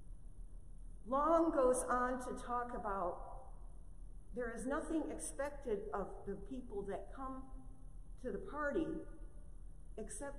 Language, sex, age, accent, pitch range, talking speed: English, female, 50-69, American, 210-270 Hz, 110 wpm